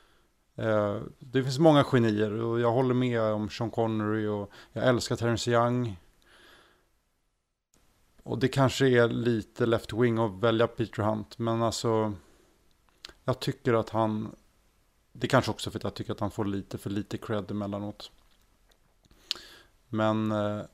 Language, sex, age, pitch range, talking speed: Swedish, male, 30-49, 105-120 Hz, 145 wpm